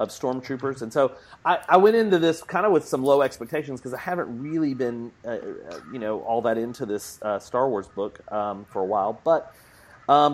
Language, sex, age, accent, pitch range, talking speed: English, male, 30-49, American, 110-135 Hz, 215 wpm